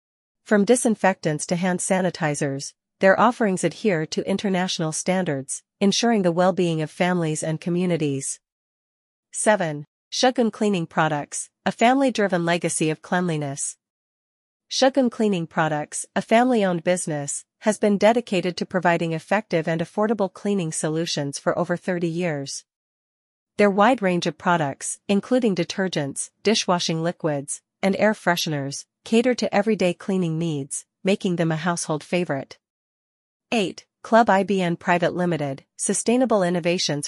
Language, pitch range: English, 160-200 Hz